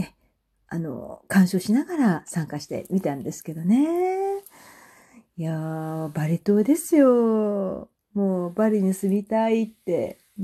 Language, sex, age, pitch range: Japanese, female, 40-59, 160-255 Hz